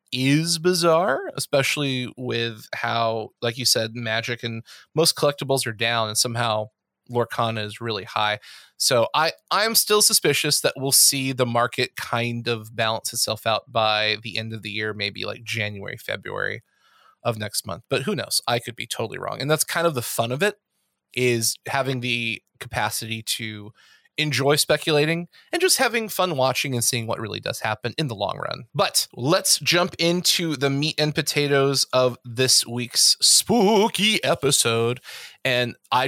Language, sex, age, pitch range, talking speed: English, male, 20-39, 120-160 Hz, 170 wpm